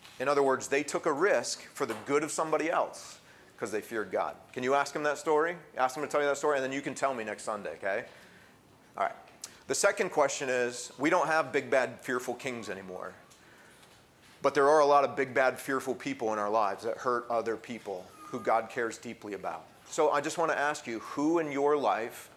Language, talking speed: English, 230 wpm